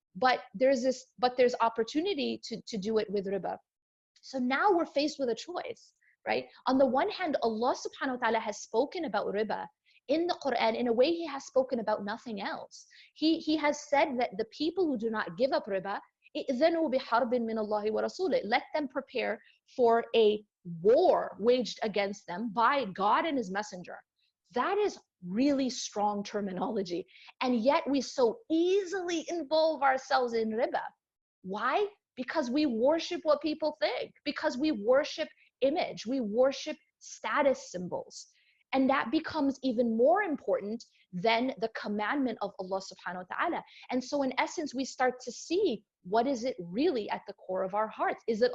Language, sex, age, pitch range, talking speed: English, female, 30-49, 220-300 Hz, 170 wpm